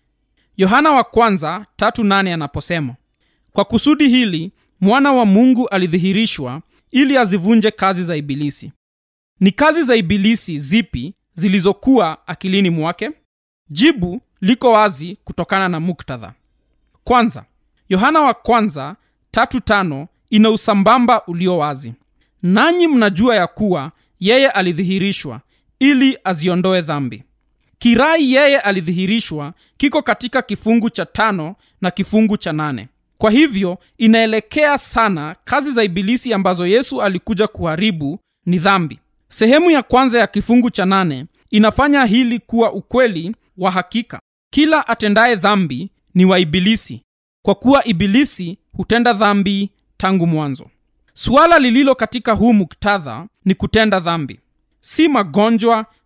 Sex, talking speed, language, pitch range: male, 120 wpm, Swahili, 180-235 Hz